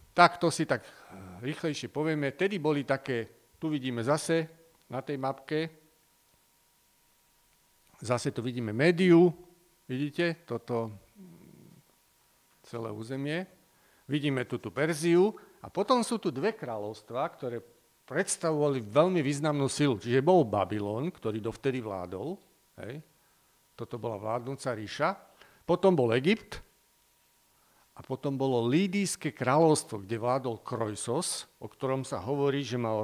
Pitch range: 120-165 Hz